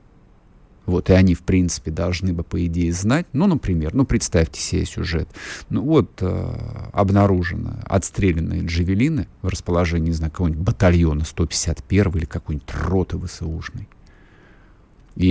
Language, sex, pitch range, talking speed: Russian, male, 85-120 Hz, 135 wpm